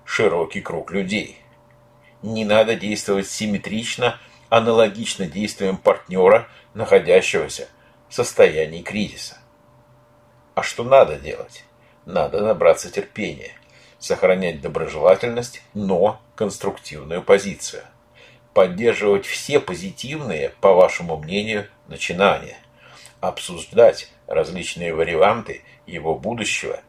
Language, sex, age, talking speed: Russian, male, 50-69, 85 wpm